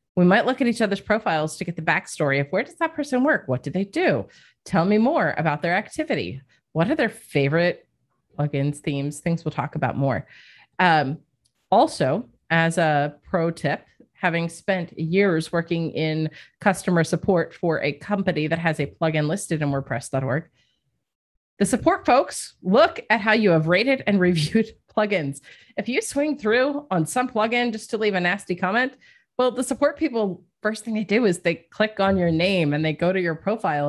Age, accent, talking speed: 30-49, American, 190 wpm